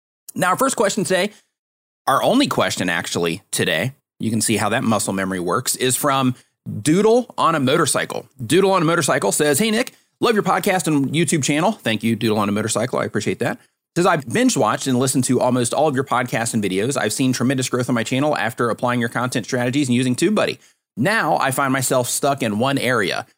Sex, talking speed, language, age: male, 215 wpm, English, 30-49